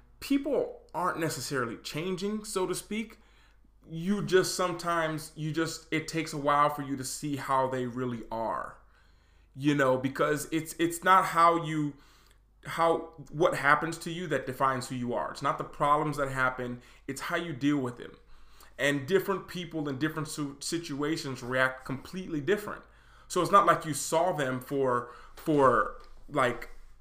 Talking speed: 165 wpm